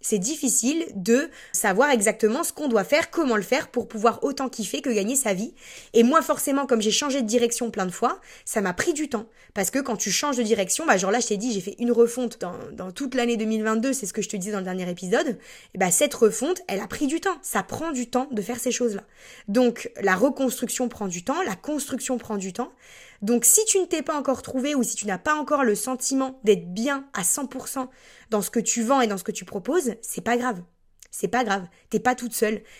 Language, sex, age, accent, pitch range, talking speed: French, female, 20-39, French, 210-265 Hz, 250 wpm